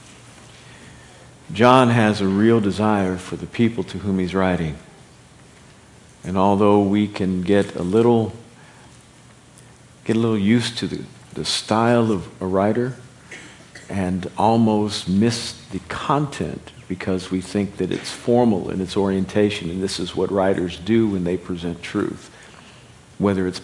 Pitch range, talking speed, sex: 95-115 Hz, 140 wpm, male